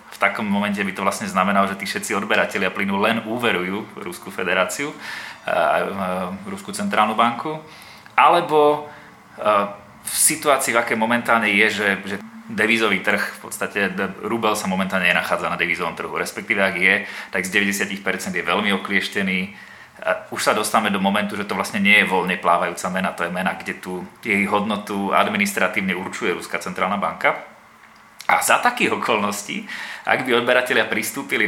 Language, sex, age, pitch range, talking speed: Slovak, male, 30-49, 100-115 Hz, 155 wpm